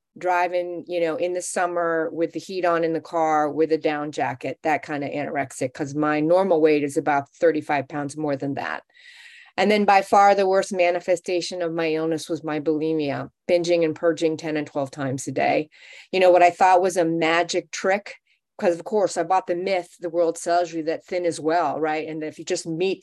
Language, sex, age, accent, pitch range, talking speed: English, female, 30-49, American, 155-175 Hz, 215 wpm